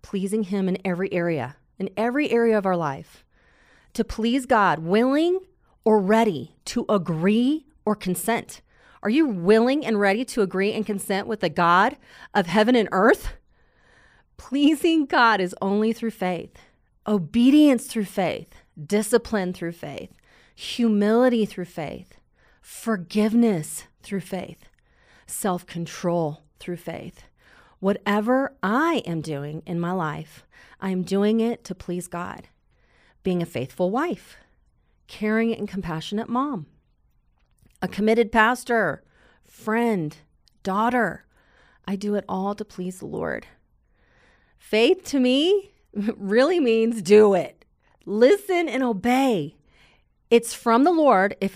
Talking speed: 125 wpm